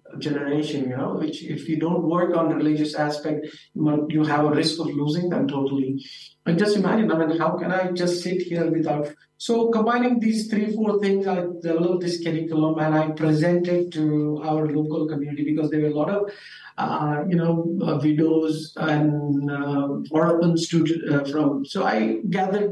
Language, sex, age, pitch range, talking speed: Arabic, male, 50-69, 150-180 Hz, 180 wpm